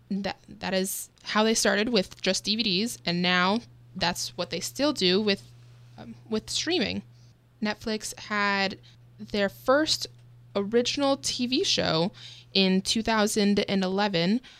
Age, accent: 20-39, American